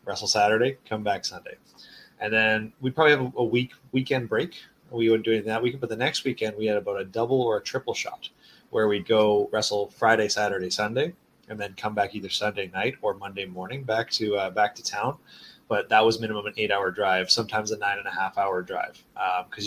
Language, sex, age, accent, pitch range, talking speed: English, male, 20-39, American, 105-130 Hz, 205 wpm